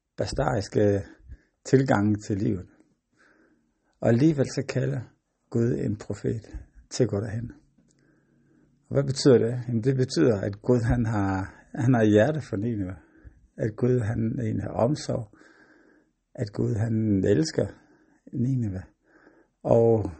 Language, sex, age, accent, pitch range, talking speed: Danish, male, 60-79, native, 105-130 Hz, 125 wpm